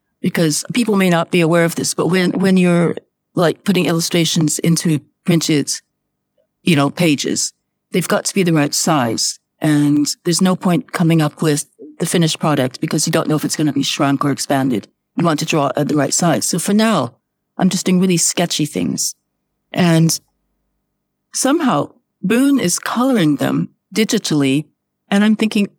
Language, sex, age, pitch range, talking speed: English, female, 50-69, 145-195 Hz, 175 wpm